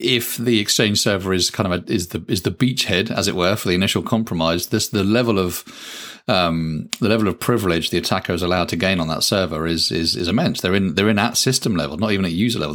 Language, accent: English, British